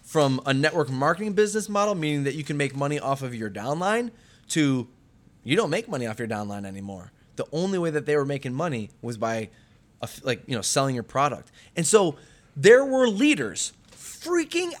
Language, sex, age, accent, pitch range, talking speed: English, male, 20-39, American, 135-190 Hz, 190 wpm